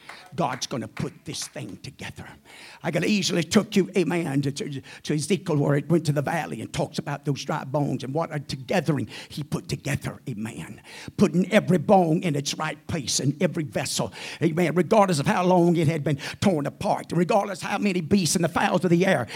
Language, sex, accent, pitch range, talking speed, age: English, male, American, 180-245 Hz, 210 wpm, 50-69